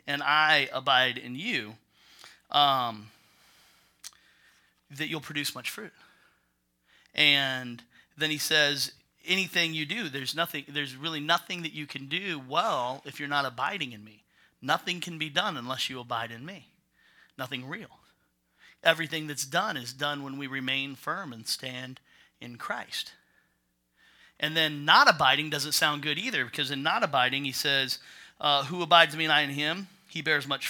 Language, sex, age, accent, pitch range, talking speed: English, male, 40-59, American, 130-165 Hz, 165 wpm